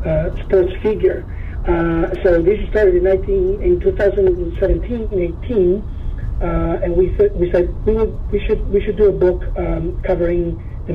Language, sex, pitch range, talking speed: English, male, 165-190 Hz, 150 wpm